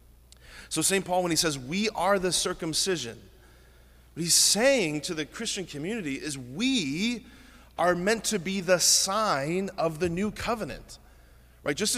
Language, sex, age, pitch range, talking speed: English, male, 30-49, 135-195 Hz, 155 wpm